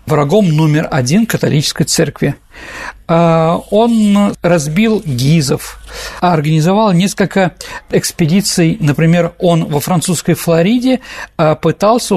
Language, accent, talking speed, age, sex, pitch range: Russian, native, 85 wpm, 50-69, male, 155-195 Hz